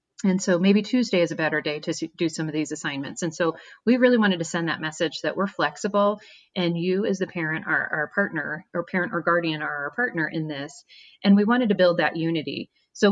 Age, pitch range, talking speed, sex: 30-49, 165-195 Hz, 235 wpm, female